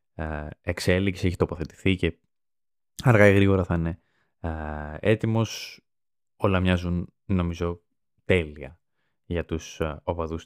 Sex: male